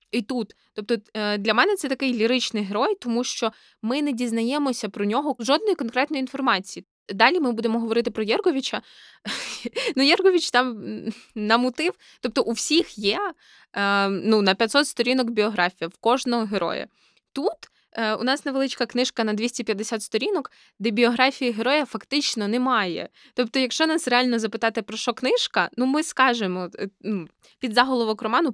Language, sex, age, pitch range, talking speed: Ukrainian, female, 20-39, 215-255 Hz, 145 wpm